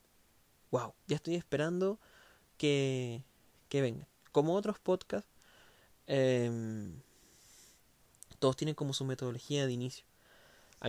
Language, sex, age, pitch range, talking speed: Spanish, male, 20-39, 120-145 Hz, 105 wpm